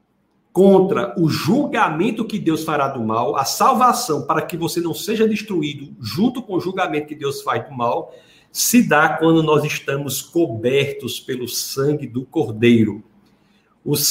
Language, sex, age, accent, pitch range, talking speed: Portuguese, male, 60-79, Brazilian, 130-185 Hz, 155 wpm